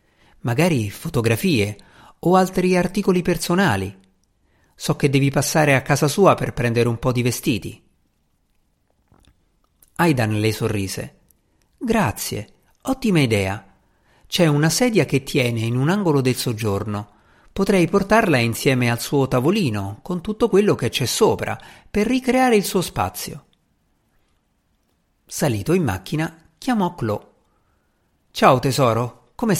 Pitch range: 105-170 Hz